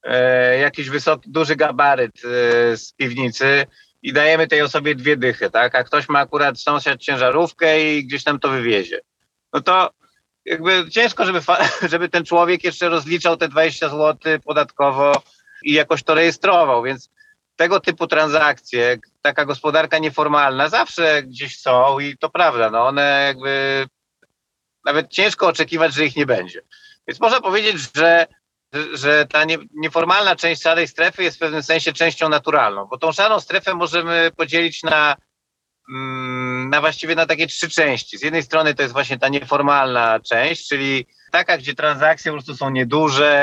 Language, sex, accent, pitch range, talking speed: Polish, male, native, 135-160 Hz, 155 wpm